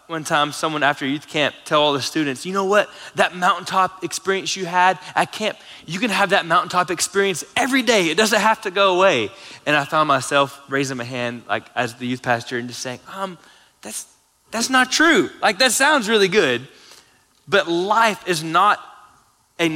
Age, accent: 20-39, American